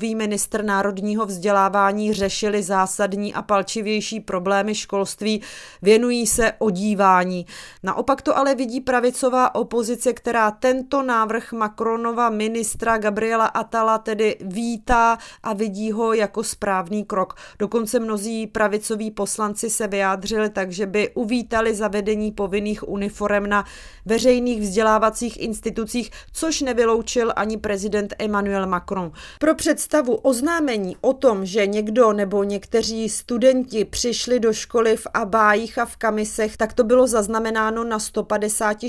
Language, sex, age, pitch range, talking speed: Czech, female, 30-49, 210-230 Hz, 125 wpm